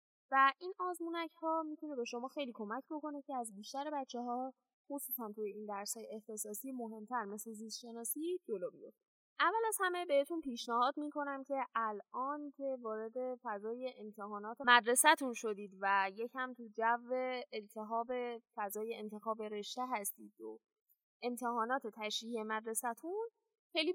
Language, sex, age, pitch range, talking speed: Persian, female, 10-29, 220-290 Hz, 135 wpm